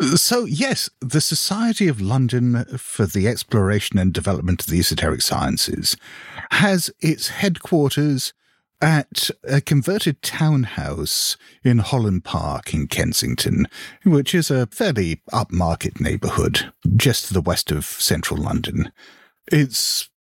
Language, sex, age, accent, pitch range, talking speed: English, male, 50-69, British, 100-150 Hz, 120 wpm